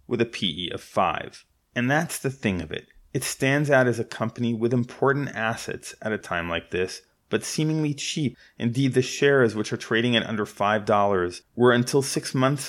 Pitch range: 100-120 Hz